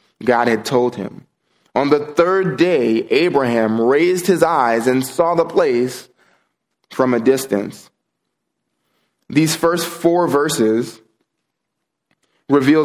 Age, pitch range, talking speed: 20-39, 120-155 Hz, 110 wpm